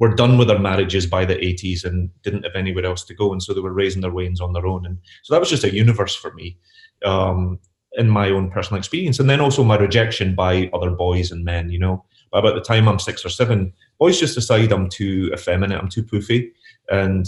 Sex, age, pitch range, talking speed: male, 30-49, 95-125 Hz, 245 wpm